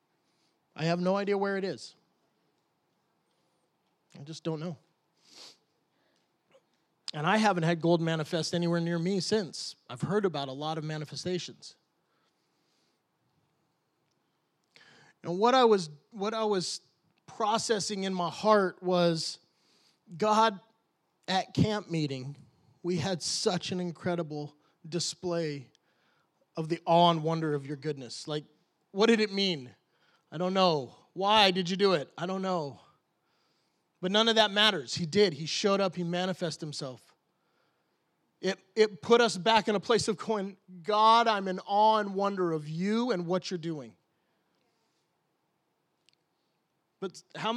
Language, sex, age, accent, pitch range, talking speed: English, male, 20-39, American, 160-200 Hz, 140 wpm